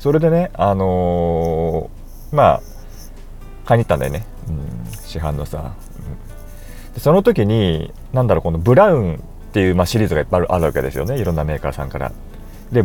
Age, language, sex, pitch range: 40-59, Japanese, male, 85-115 Hz